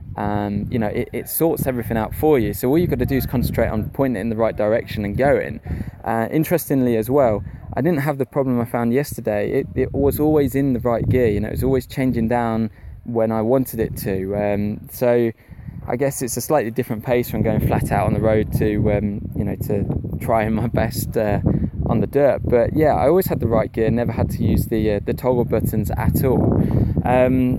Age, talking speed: 20-39, 235 wpm